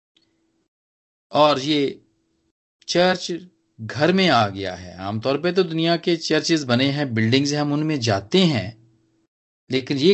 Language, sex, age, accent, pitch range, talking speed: Hindi, male, 40-59, native, 110-160 Hz, 135 wpm